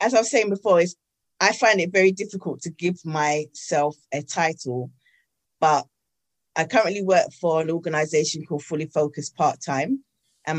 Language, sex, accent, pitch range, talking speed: English, female, British, 145-175 Hz, 155 wpm